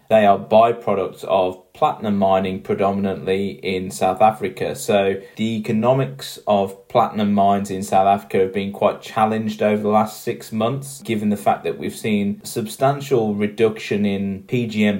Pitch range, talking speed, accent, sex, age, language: 100-120 Hz, 150 wpm, British, male, 20-39, English